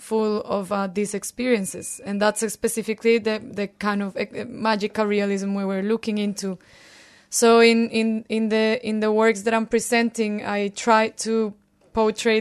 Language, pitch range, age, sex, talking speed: English, 195-220 Hz, 20-39, female, 165 wpm